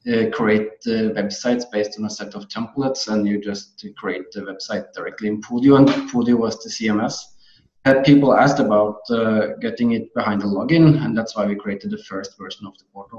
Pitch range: 110-140 Hz